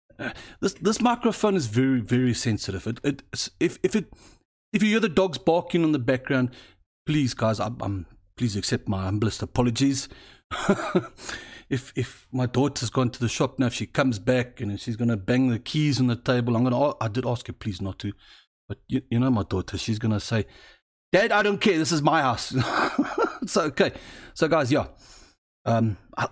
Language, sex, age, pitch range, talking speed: English, male, 30-49, 105-140 Hz, 200 wpm